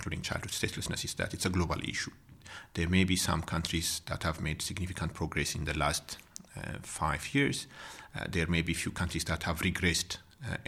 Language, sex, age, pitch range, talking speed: English, male, 40-59, 80-95 Hz, 200 wpm